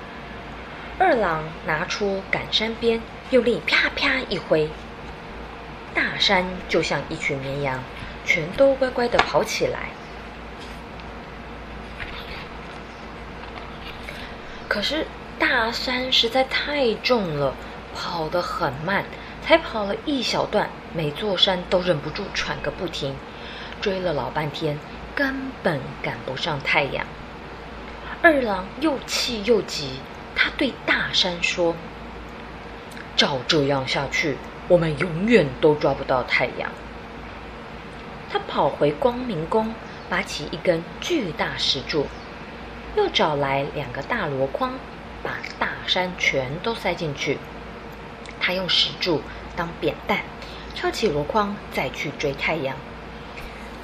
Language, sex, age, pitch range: Chinese, female, 20-39, 155-245 Hz